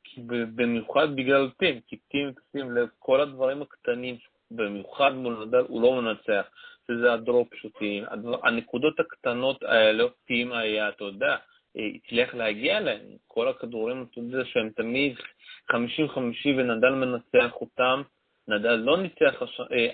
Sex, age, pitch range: male, 30-49, 130-175 Hz